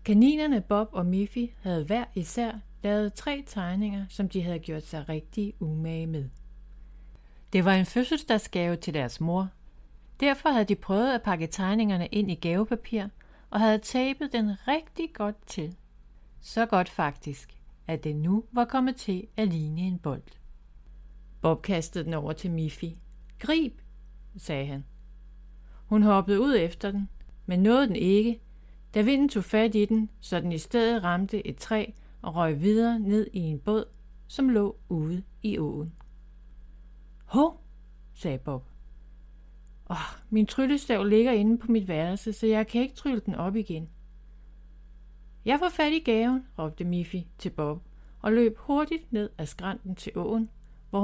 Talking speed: 160 wpm